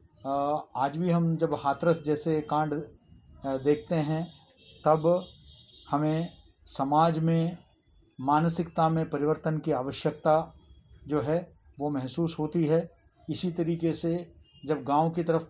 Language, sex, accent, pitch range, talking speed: Hindi, male, native, 140-170 Hz, 120 wpm